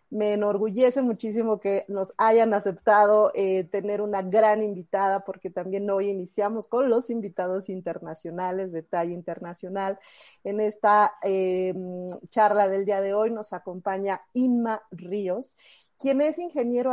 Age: 40-59